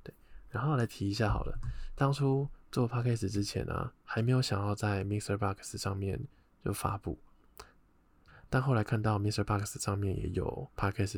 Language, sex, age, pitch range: Chinese, male, 20-39, 95-120 Hz